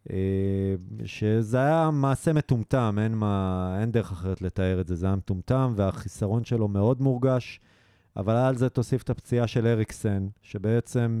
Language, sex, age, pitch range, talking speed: Hebrew, male, 30-49, 110-140 Hz, 145 wpm